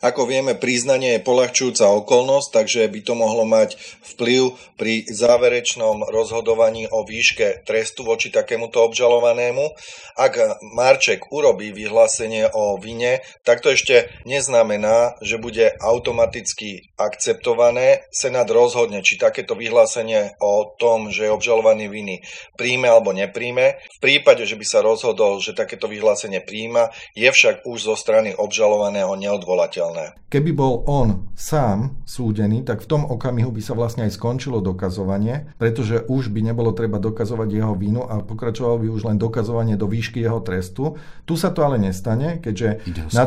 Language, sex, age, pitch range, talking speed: Slovak, male, 30-49, 105-135 Hz, 145 wpm